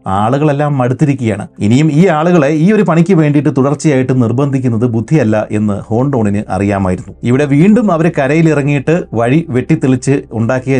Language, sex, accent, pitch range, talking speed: Malayalam, male, native, 115-155 Hz, 120 wpm